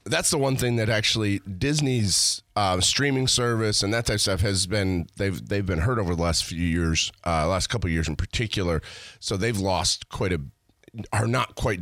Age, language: 30-49, English